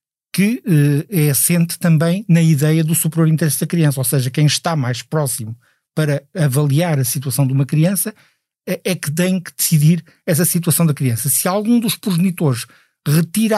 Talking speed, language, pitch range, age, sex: 170 wpm, Portuguese, 145-175 Hz, 50-69, male